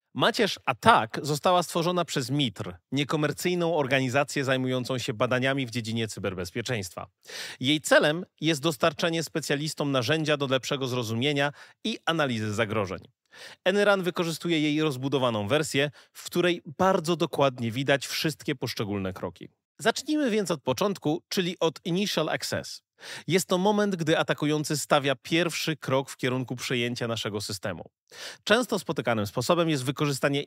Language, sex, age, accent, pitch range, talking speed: Polish, male, 30-49, native, 125-170 Hz, 130 wpm